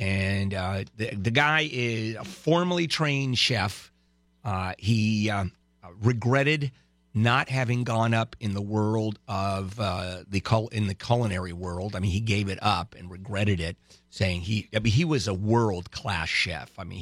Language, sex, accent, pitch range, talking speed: English, male, American, 90-110 Hz, 175 wpm